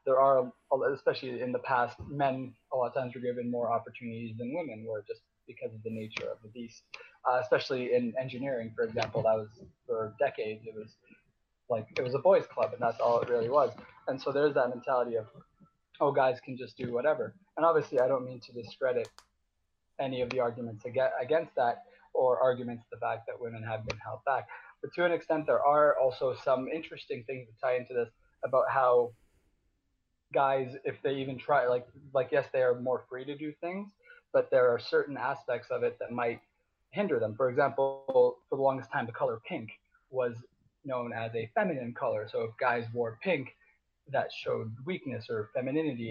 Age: 20-39